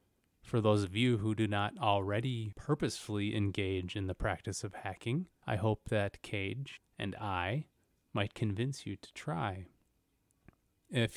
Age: 30-49